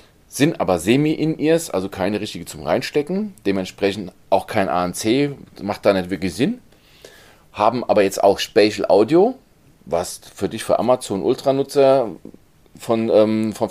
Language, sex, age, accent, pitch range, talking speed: German, male, 40-59, German, 95-125 Hz, 135 wpm